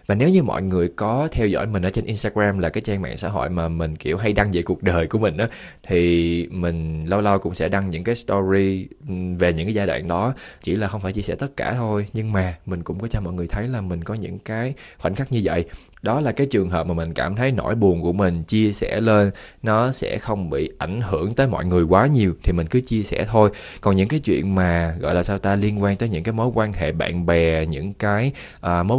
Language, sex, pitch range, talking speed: Vietnamese, male, 85-115 Hz, 265 wpm